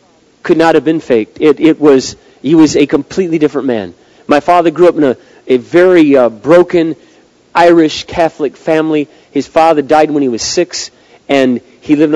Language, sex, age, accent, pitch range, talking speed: English, male, 40-59, American, 140-175 Hz, 185 wpm